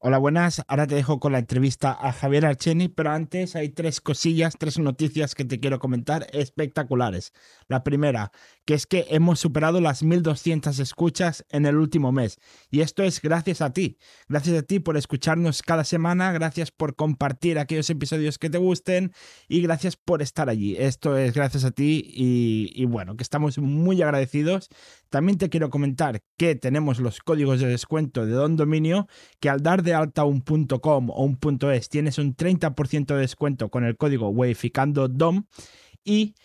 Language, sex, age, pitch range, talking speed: Spanish, male, 20-39, 140-170 Hz, 185 wpm